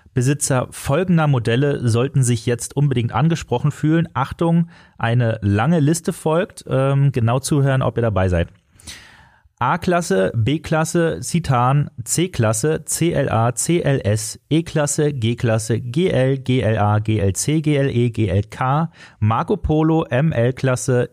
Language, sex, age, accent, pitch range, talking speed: German, male, 30-49, German, 110-145 Hz, 100 wpm